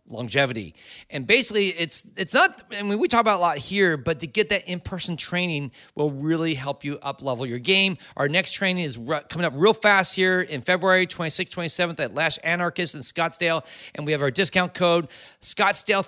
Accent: American